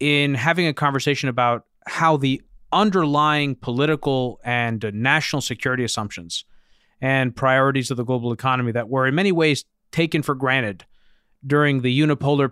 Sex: male